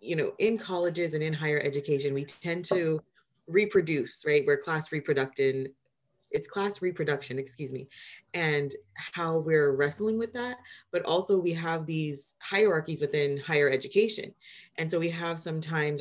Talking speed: 155 wpm